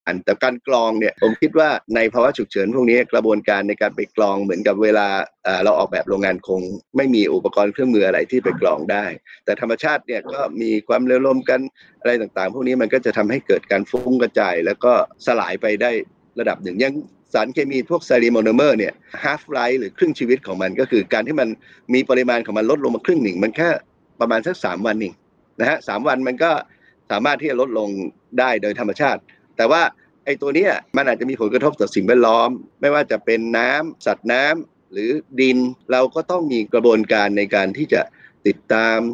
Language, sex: Thai, male